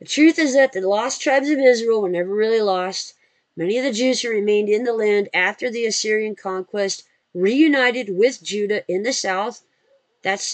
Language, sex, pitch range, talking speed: English, female, 195-250 Hz, 190 wpm